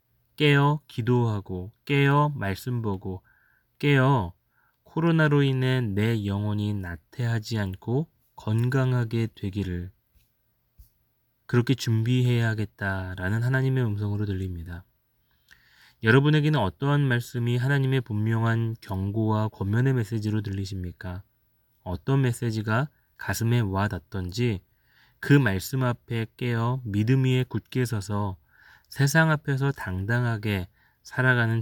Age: 20-39